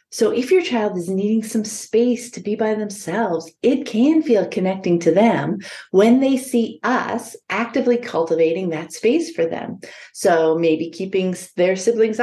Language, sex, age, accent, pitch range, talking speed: English, female, 30-49, American, 185-240 Hz, 160 wpm